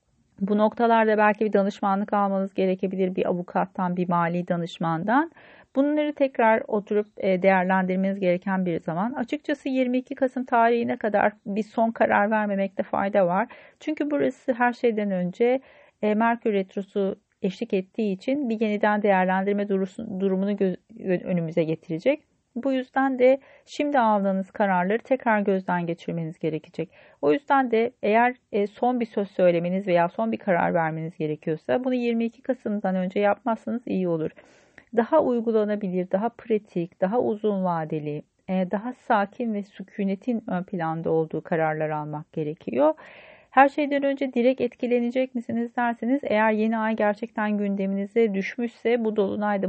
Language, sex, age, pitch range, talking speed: Turkish, female, 40-59, 190-245 Hz, 130 wpm